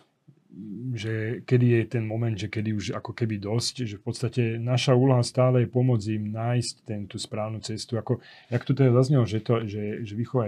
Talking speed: 185 wpm